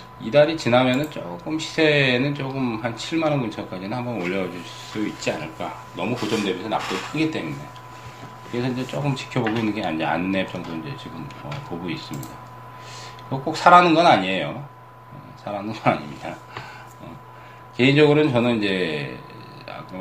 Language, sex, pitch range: Korean, male, 90-125 Hz